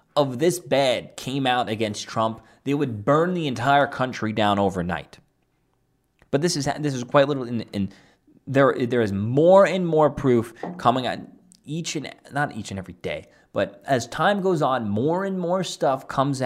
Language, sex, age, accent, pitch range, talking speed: English, male, 20-39, American, 100-140 Hz, 185 wpm